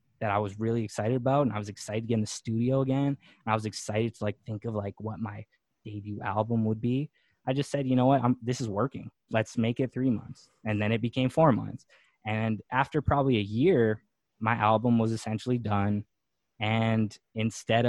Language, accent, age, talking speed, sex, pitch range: English, American, 20-39, 210 wpm, male, 105-125 Hz